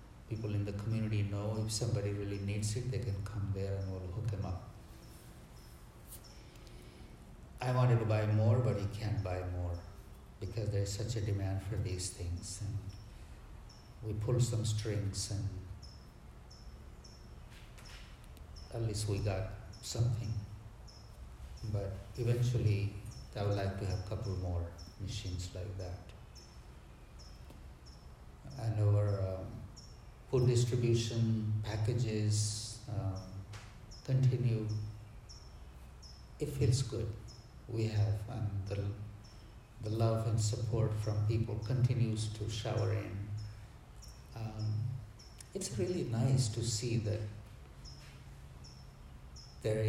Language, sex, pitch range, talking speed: English, male, 95-110 Hz, 115 wpm